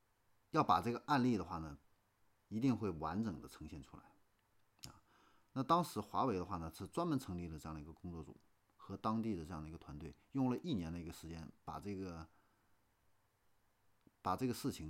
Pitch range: 80-110 Hz